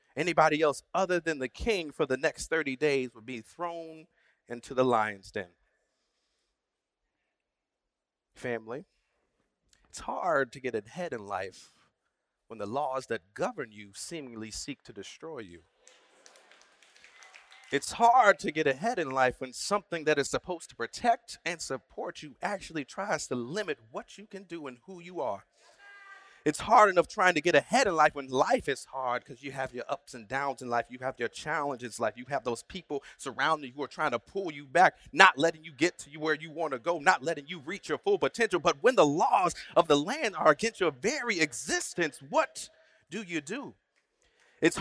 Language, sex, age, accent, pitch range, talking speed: English, male, 30-49, American, 130-195 Hz, 190 wpm